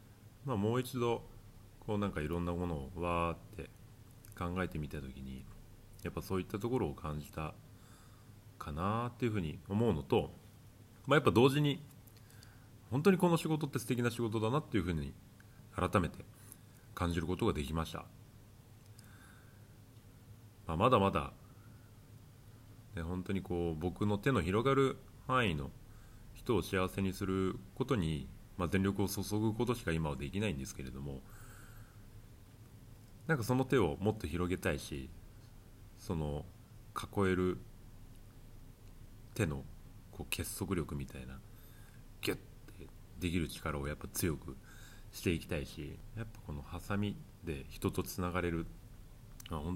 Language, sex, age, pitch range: Japanese, male, 30-49, 90-115 Hz